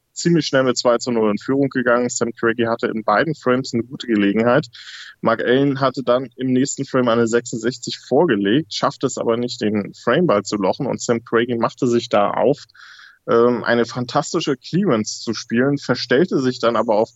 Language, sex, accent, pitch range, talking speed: German, male, German, 110-130 Hz, 185 wpm